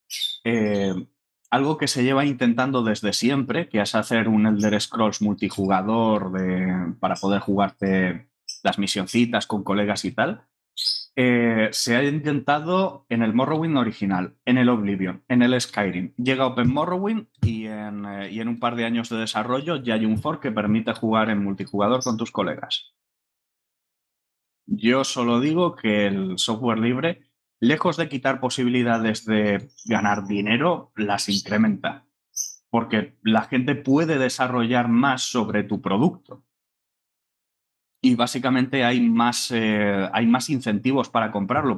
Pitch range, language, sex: 105-130 Hz, Spanish, male